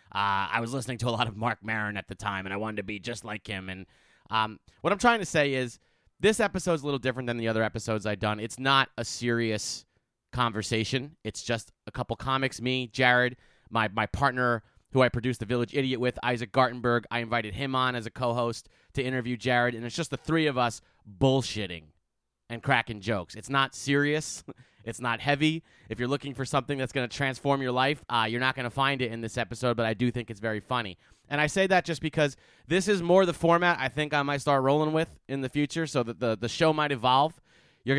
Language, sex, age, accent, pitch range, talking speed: English, male, 30-49, American, 115-140 Hz, 235 wpm